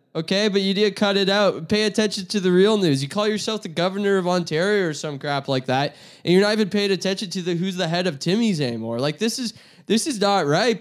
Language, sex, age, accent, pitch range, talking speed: English, male, 20-39, American, 160-215 Hz, 260 wpm